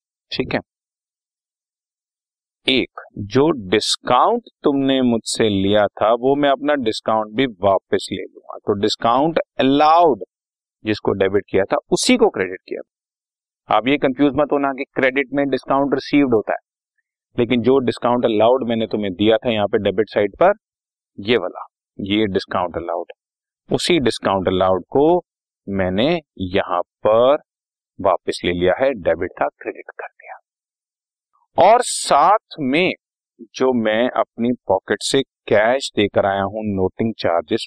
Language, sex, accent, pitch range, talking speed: Hindi, male, native, 105-135 Hz, 140 wpm